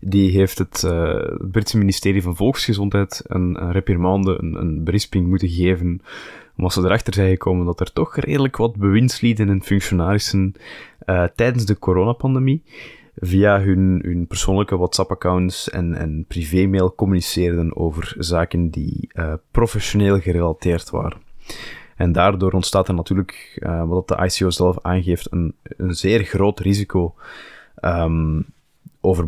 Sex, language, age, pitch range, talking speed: male, Dutch, 20-39, 90-105 Hz, 135 wpm